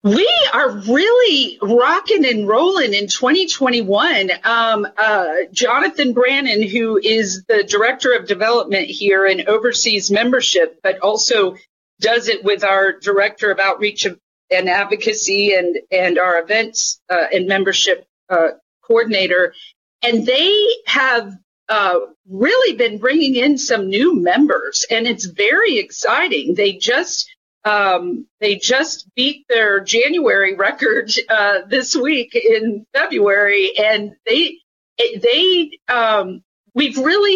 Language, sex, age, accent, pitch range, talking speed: English, female, 50-69, American, 205-320 Hz, 125 wpm